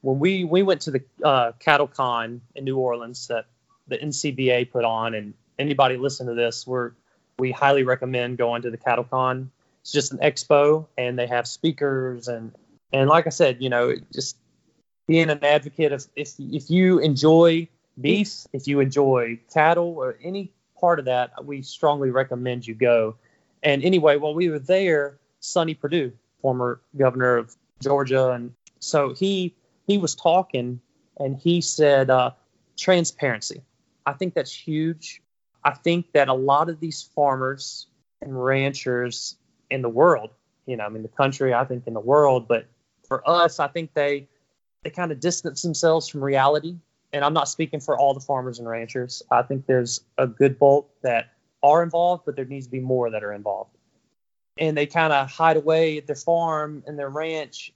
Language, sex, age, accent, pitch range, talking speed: English, male, 20-39, American, 125-155 Hz, 180 wpm